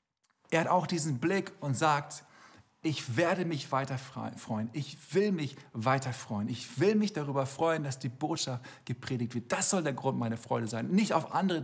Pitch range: 140-195 Hz